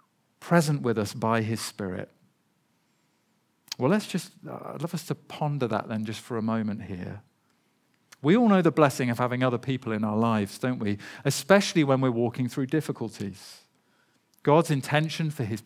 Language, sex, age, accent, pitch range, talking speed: English, male, 40-59, British, 120-160 Hz, 175 wpm